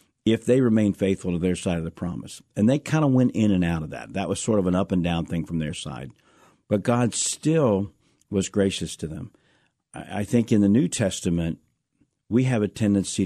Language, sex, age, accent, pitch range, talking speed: English, male, 50-69, American, 90-110 Hz, 220 wpm